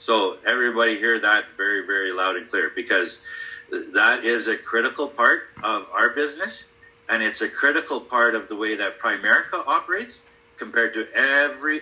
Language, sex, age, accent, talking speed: English, male, 50-69, American, 160 wpm